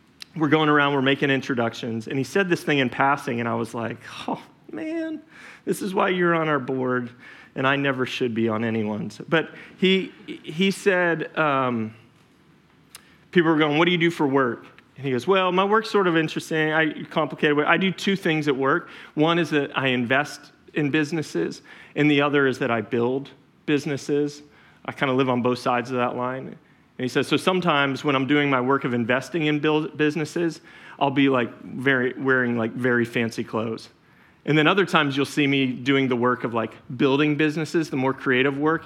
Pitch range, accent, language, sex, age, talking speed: 125-155 Hz, American, English, male, 30-49, 205 wpm